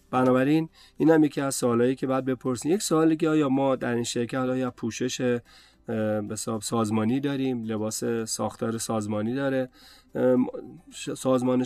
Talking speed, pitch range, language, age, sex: 140 wpm, 110-130 Hz, Persian, 30-49, male